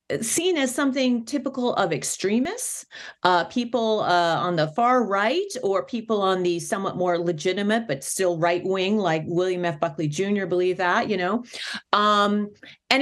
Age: 40-59